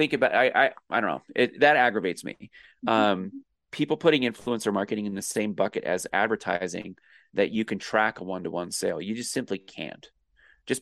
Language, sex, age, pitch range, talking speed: English, male, 20-39, 95-115 Hz, 190 wpm